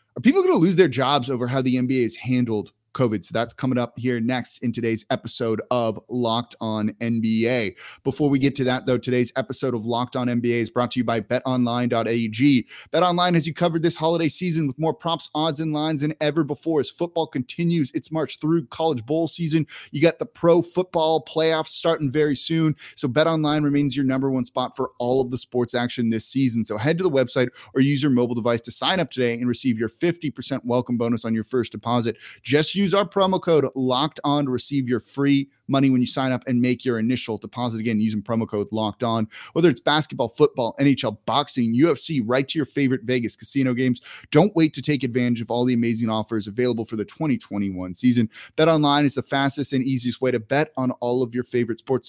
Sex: male